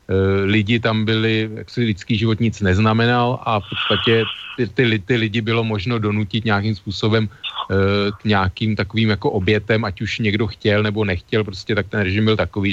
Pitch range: 100-115 Hz